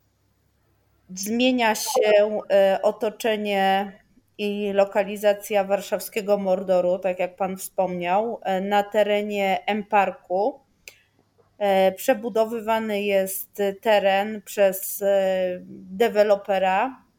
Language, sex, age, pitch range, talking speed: Polish, female, 20-39, 195-215 Hz, 70 wpm